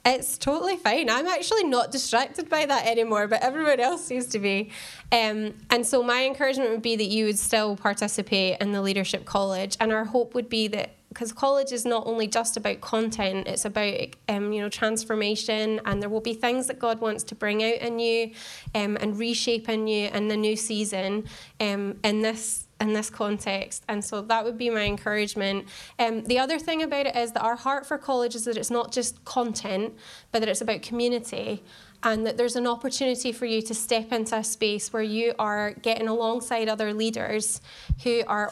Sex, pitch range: female, 210-240 Hz